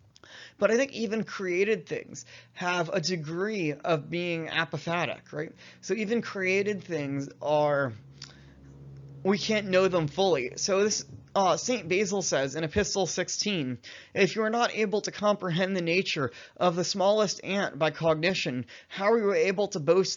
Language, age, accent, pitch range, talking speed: English, 20-39, American, 150-195 Hz, 160 wpm